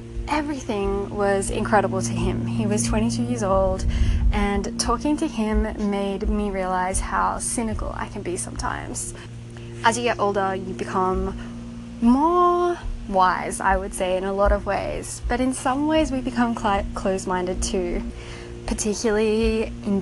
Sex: female